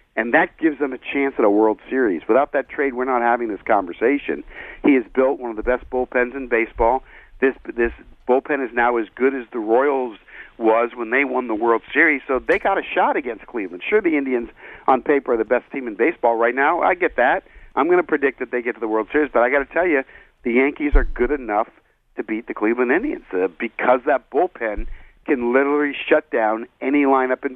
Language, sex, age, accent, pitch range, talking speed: English, male, 50-69, American, 120-140 Hz, 230 wpm